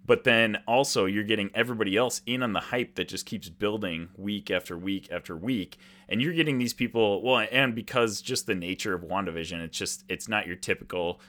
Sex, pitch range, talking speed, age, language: male, 90-115 Hz, 205 wpm, 30-49, English